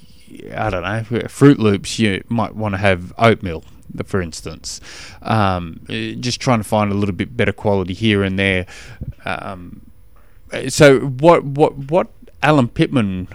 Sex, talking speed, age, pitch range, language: male, 150 wpm, 20-39, 100-125 Hz, English